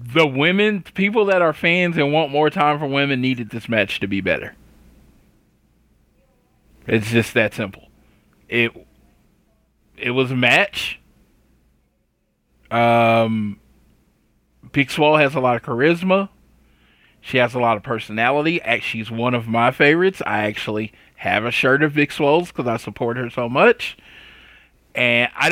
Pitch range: 115-150 Hz